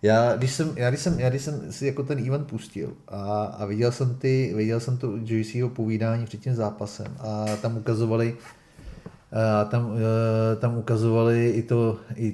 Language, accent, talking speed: Czech, native, 185 wpm